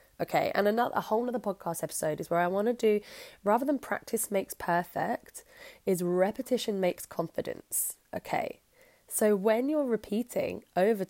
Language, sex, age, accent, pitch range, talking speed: English, female, 10-29, British, 180-245 Hz, 150 wpm